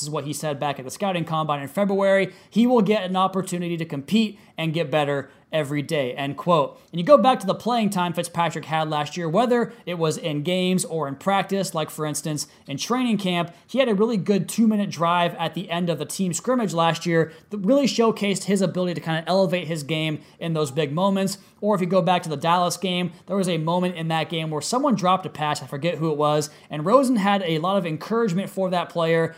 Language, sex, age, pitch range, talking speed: English, male, 30-49, 160-195 Hz, 245 wpm